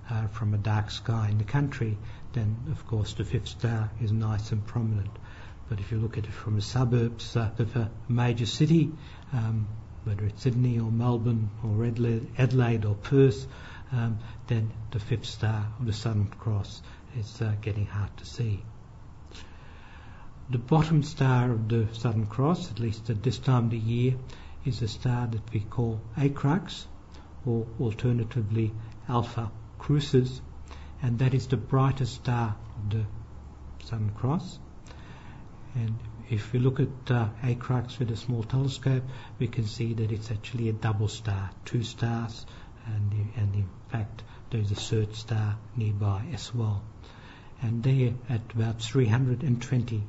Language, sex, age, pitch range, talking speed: English, male, 60-79, 105-120 Hz, 155 wpm